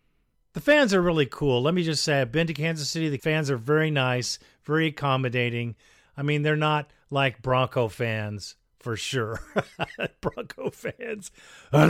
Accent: American